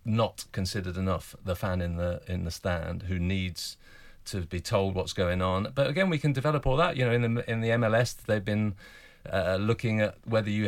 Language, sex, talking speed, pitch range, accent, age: English, male, 220 wpm, 95-110 Hz, British, 40-59